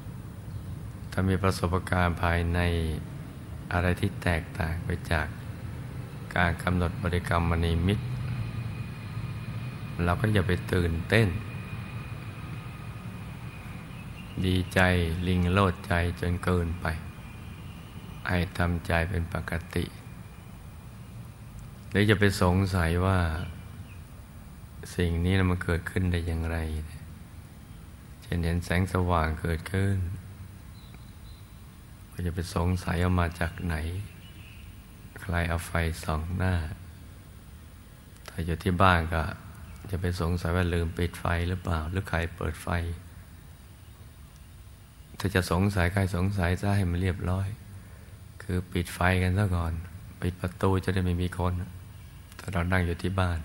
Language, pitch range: Thai, 85-100 Hz